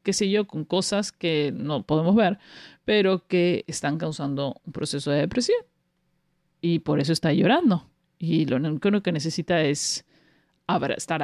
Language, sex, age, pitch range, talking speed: Spanish, male, 40-59, 165-200 Hz, 155 wpm